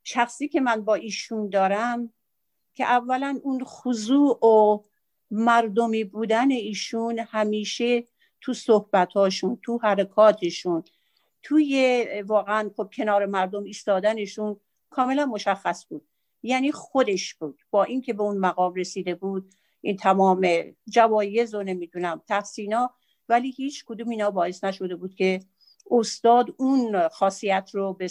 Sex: female